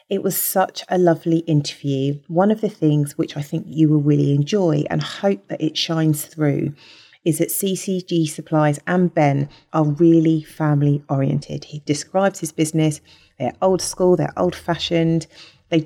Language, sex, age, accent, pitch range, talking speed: English, female, 40-59, British, 150-170 Hz, 165 wpm